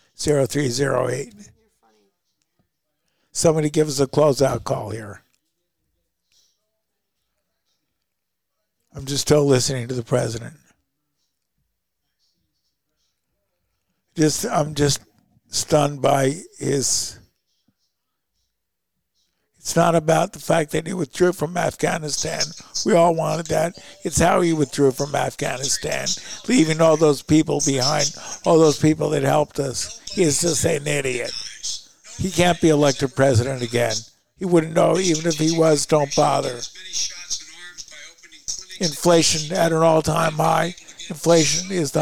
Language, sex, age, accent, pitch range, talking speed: English, male, 50-69, American, 145-170 Hz, 115 wpm